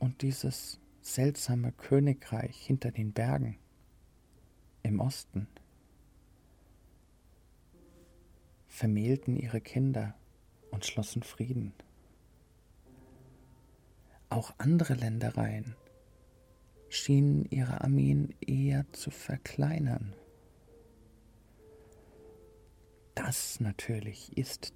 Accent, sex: German, male